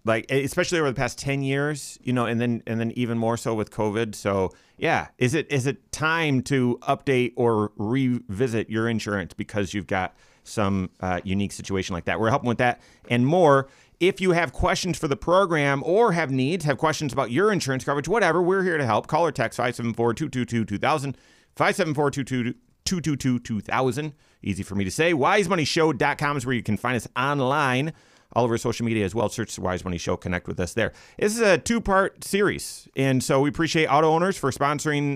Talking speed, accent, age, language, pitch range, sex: 195 wpm, American, 30-49, English, 115-150 Hz, male